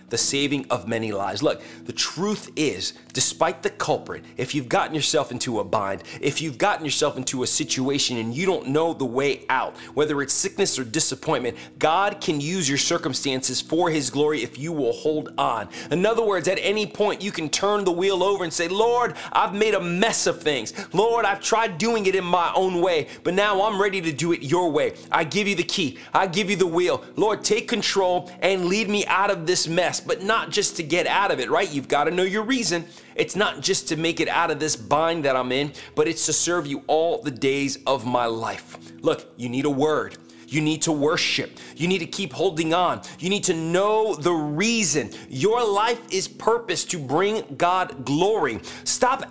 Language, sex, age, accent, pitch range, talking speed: English, male, 30-49, American, 140-200 Hz, 220 wpm